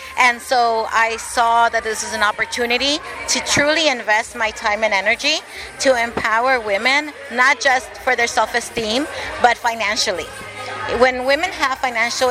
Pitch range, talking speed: 205-255 Hz, 145 wpm